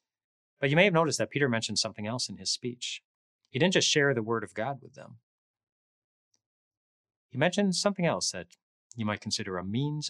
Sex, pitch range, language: male, 105-140 Hz, English